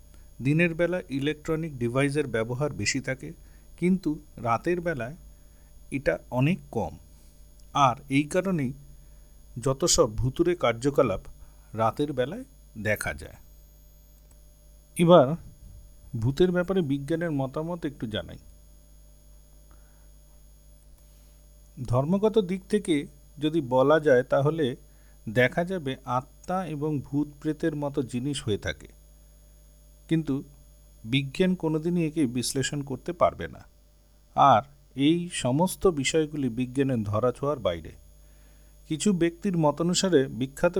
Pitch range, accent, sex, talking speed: 100-160 Hz, native, male, 75 wpm